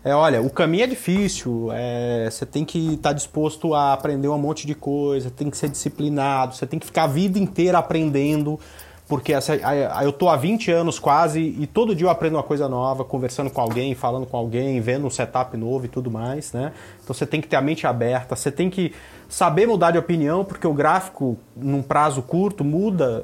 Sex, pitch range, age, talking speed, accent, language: male, 135-170 Hz, 30-49, 205 wpm, Brazilian, Portuguese